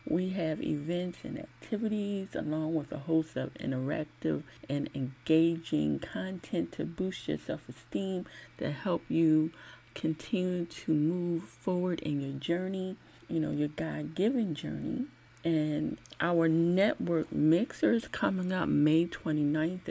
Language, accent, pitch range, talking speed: English, American, 150-170 Hz, 125 wpm